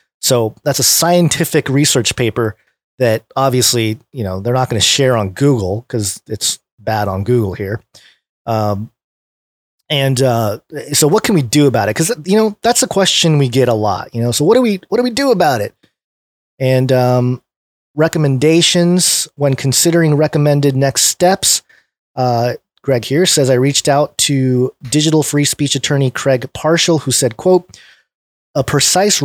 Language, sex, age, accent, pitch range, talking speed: English, male, 30-49, American, 125-155 Hz, 170 wpm